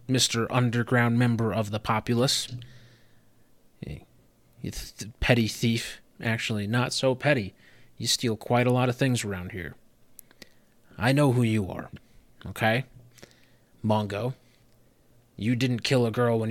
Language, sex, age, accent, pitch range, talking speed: English, male, 20-39, American, 110-125 Hz, 125 wpm